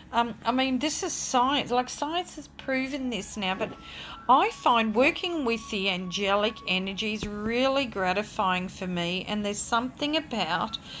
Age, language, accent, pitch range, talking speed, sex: 40-59, English, Australian, 185-240 Hz, 155 wpm, female